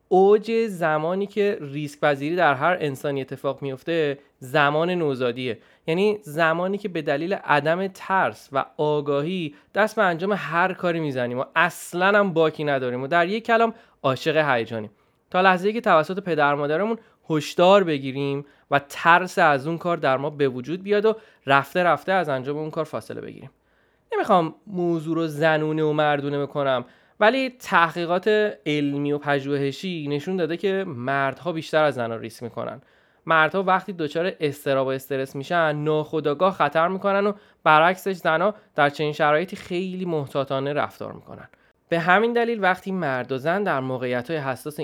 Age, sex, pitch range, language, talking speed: 20-39, male, 140-185 Hz, Persian, 155 wpm